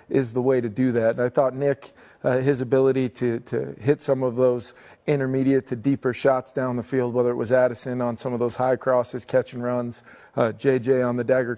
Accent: American